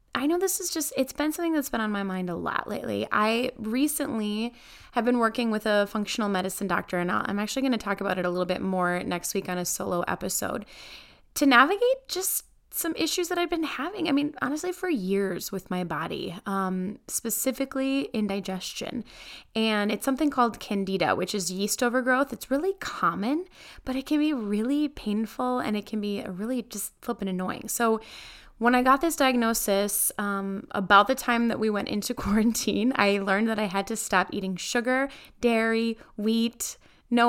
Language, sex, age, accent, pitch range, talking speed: English, female, 20-39, American, 195-260 Hz, 190 wpm